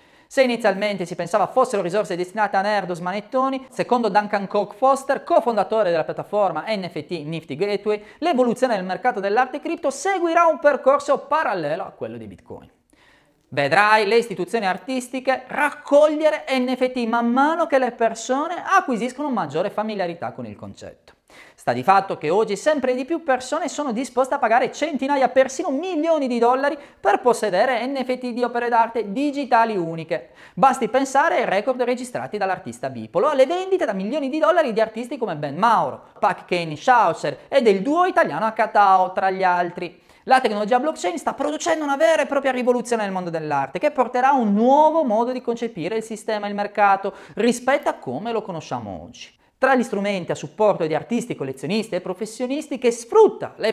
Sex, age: male, 30-49